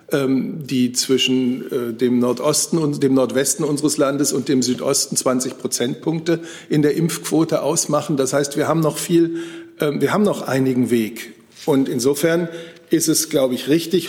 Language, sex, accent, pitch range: German, male, German, 125-160 Hz